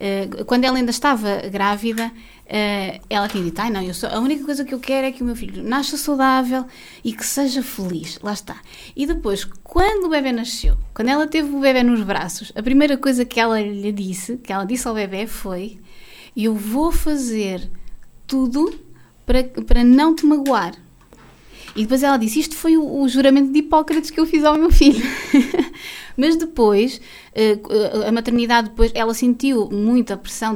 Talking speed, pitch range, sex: 175 wpm, 210-270 Hz, female